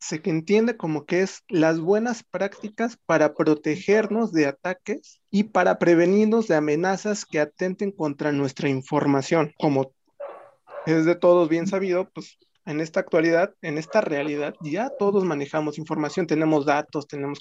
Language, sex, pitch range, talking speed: Spanish, male, 155-210 Hz, 145 wpm